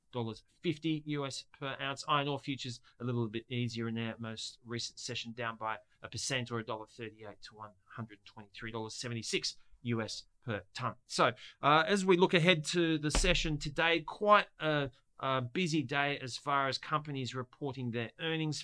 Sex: male